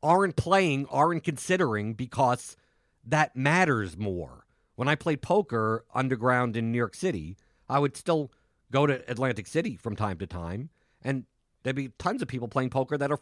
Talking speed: 170 wpm